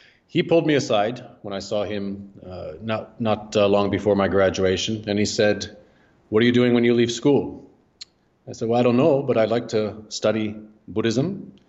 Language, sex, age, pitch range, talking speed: English, male, 30-49, 100-120 Hz, 200 wpm